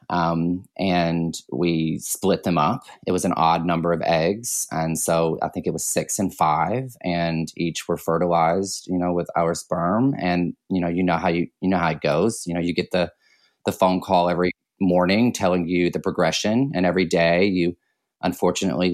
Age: 20-39